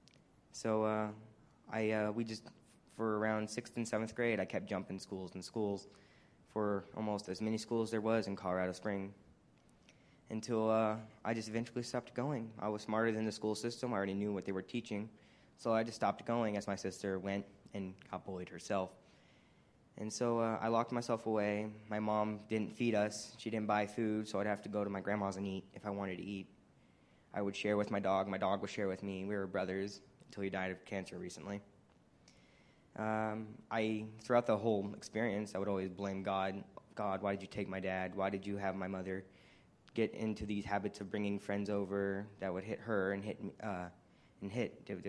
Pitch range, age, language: 100-110 Hz, 20-39, English